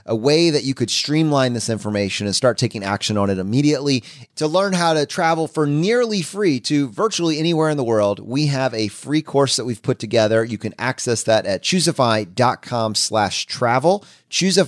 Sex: male